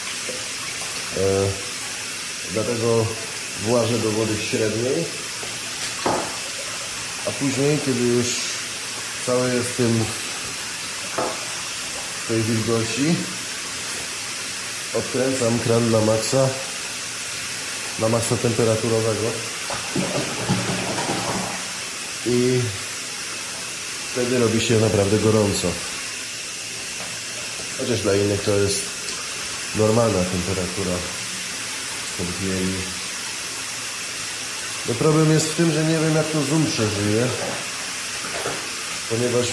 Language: Polish